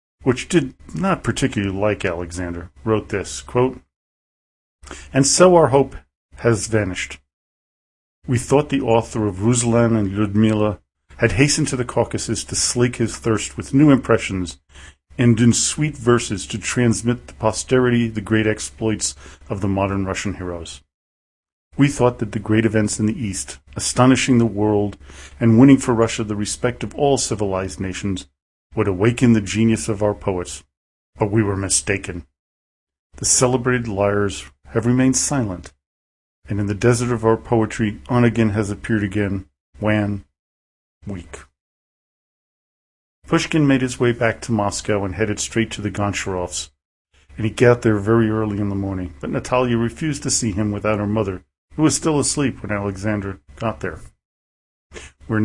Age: 40-59